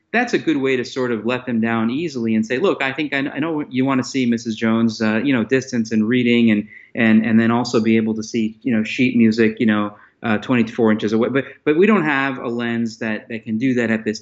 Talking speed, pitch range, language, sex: 265 wpm, 115-140 Hz, English, male